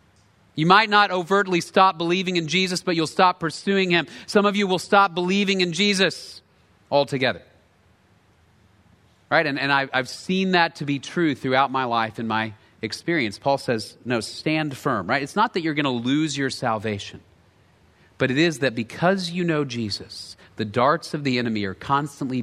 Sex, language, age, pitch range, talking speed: male, English, 40-59, 110-155 Hz, 180 wpm